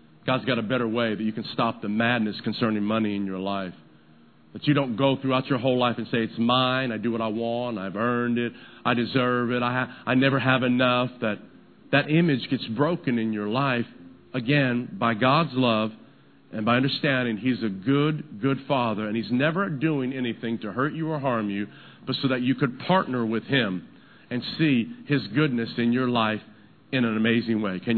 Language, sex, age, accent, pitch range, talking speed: English, male, 50-69, American, 120-170 Hz, 205 wpm